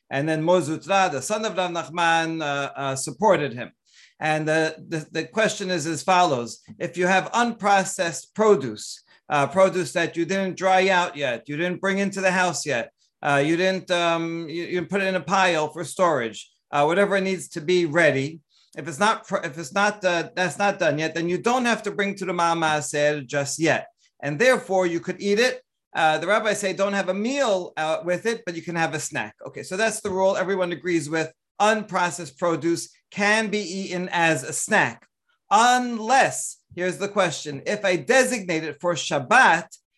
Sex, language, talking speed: male, English, 195 wpm